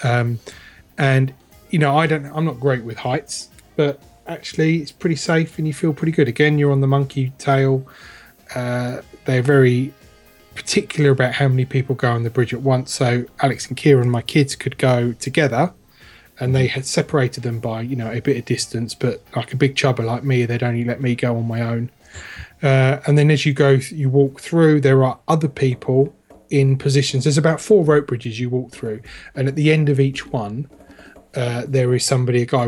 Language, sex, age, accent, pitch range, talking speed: English, male, 20-39, British, 115-140 Hz, 205 wpm